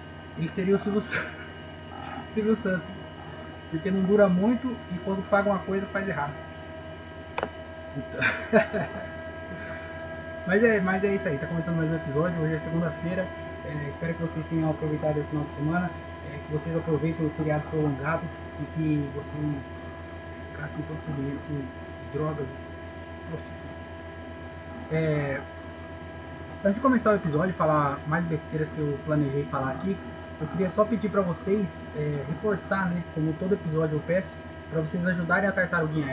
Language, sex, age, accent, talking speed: Portuguese, male, 20-39, Brazilian, 155 wpm